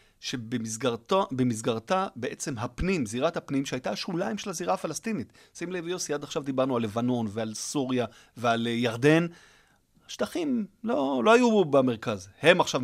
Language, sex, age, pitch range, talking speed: Hebrew, male, 30-49, 115-150 Hz, 135 wpm